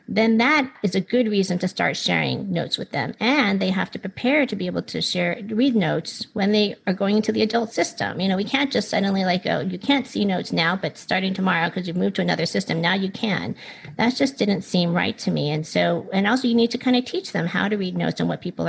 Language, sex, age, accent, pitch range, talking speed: English, female, 40-59, American, 175-225 Hz, 265 wpm